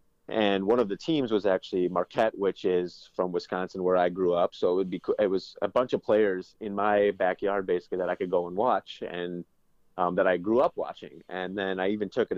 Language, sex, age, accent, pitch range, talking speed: English, male, 30-49, American, 90-100 Hz, 235 wpm